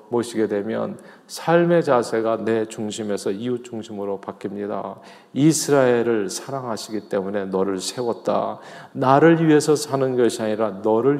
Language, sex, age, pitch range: Korean, male, 40-59, 115-150 Hz